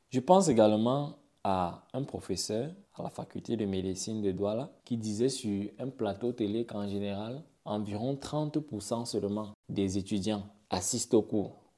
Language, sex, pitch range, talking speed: French, male, 105-130 Hz, 150 wpm